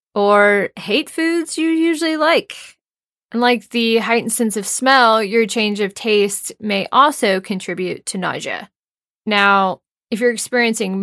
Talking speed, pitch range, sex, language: 140 wpm, 195-265 Hz, female, English